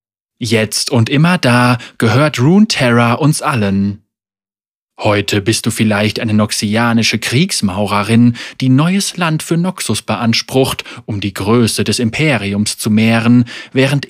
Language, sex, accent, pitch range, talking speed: German, male, German, 110-140 Hz, 125 wpm